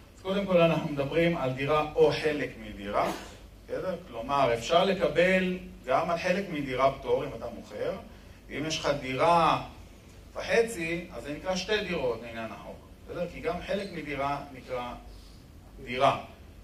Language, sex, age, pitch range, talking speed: Hebrew, male, 40-59, 115-170 Hz, 140 wpm